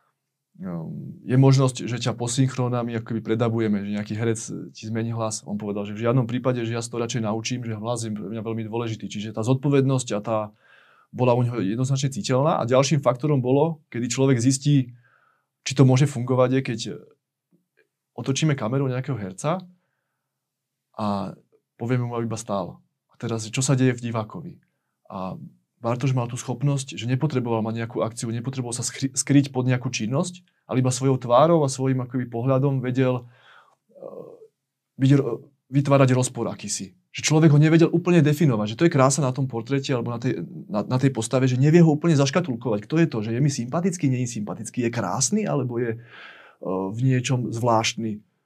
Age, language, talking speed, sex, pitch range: 20-39, Slovak, 175 wpm, male, 115-140 Hz